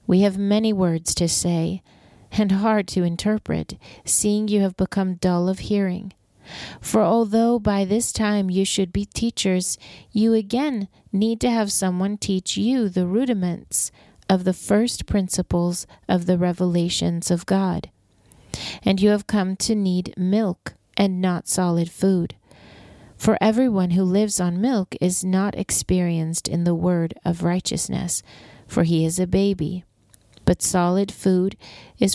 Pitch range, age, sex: 165-200 Hz, 40-59, female